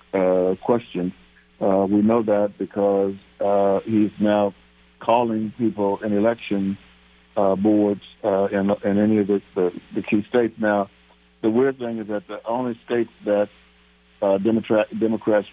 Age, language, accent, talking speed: 60-79, English, American, 145 wpm